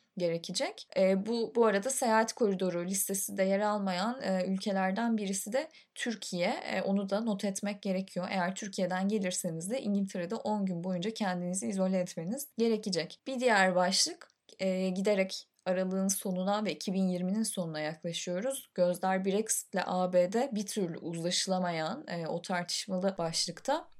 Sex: female